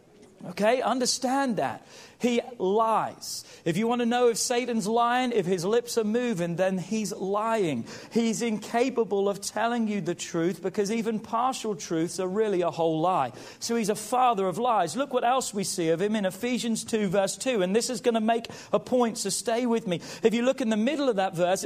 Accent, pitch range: British, 190-240 Hz